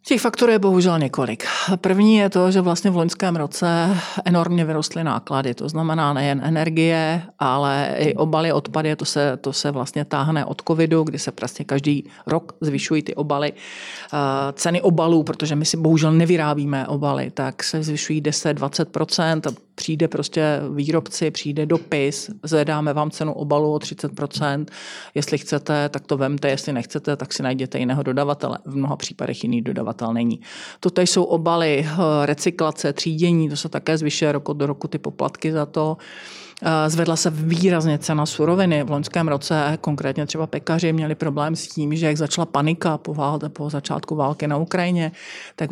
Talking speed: 160 wpm